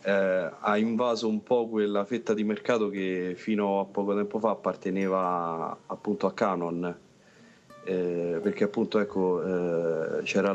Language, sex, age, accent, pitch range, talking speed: Italian, male, 30-49, native, 95-110 Hz, 140 wpm